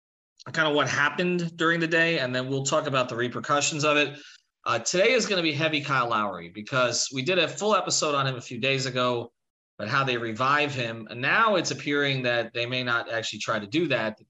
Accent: American